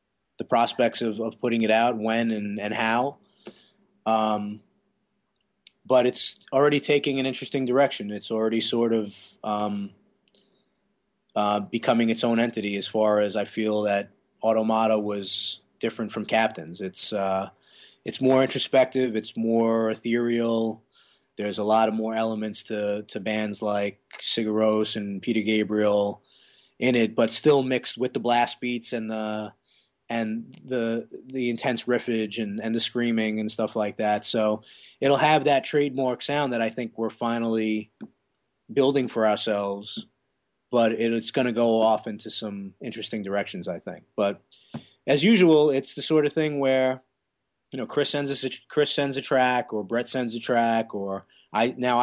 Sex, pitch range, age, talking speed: male, 105-125 Hz, 20-39, 160 wpm